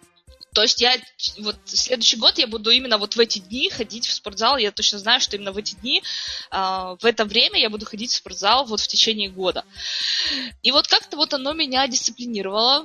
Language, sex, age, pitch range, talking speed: Russian, female, 20-39, 205-255 Hz, 205 wpm